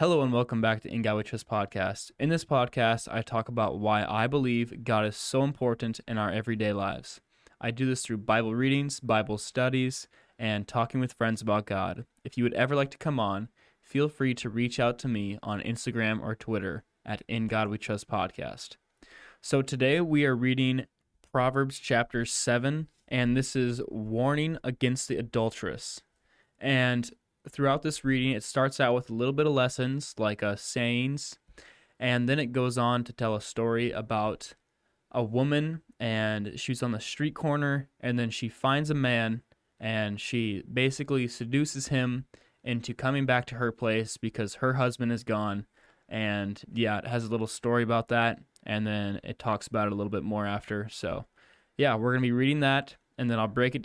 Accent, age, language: American, 10-29, English